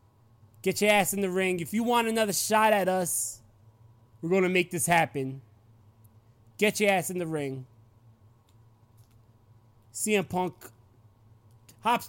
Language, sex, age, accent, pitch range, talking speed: English, male, 20-39, American, 110-185 Hz, 140 wpm